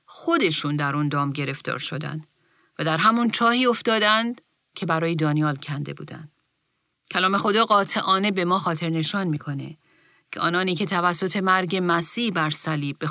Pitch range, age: 160-205 Hz, 40-59